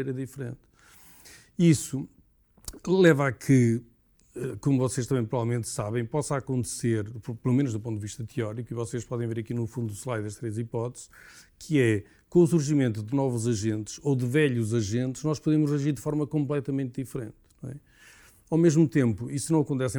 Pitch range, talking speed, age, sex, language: 115-140 Hz, 175 wpm, 40-59, male, Portuguese